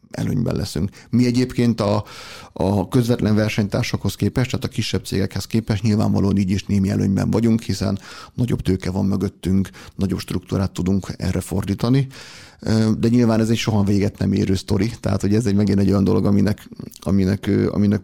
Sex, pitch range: male, 100-120 Hz